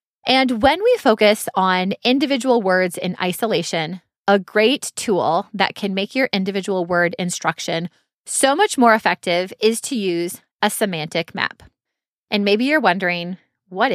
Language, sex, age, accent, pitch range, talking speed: English, female, 20-39, American, 175-225 Hz, 145 wpm